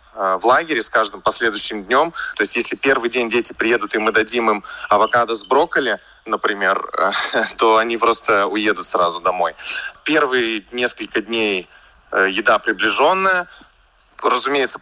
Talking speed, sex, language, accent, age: 135 wpm, male, Russian, native, 20-39